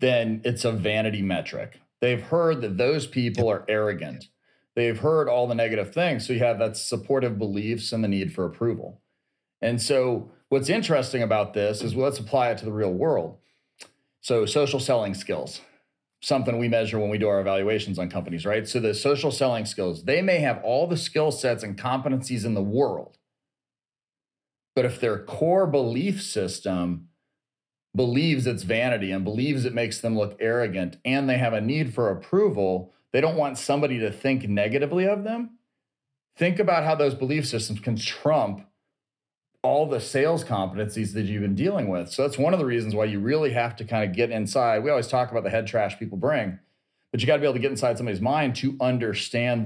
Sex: male